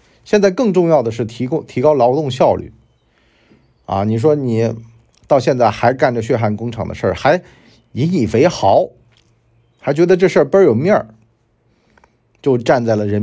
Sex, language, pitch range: male, Chinese, 105-135 Hz